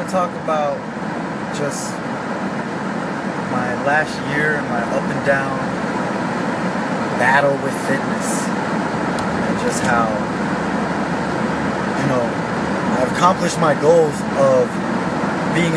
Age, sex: 20-39, male